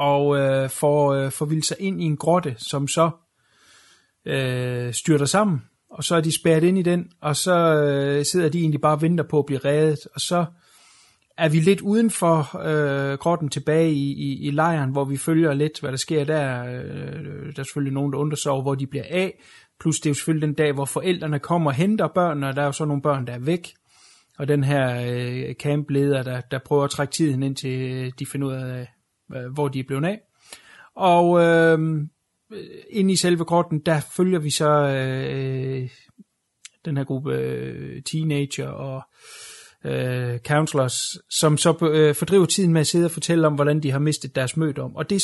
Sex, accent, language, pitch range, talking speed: male, native, Danish, 135-165 Hz, 200 wpm